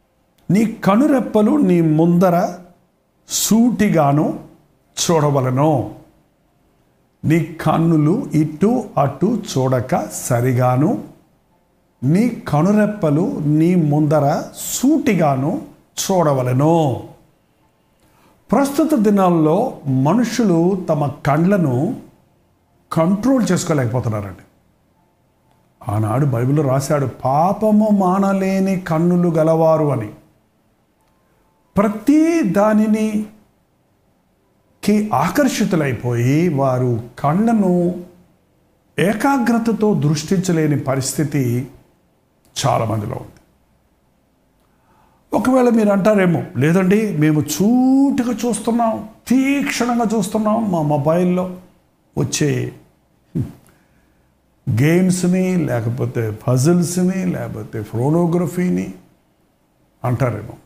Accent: native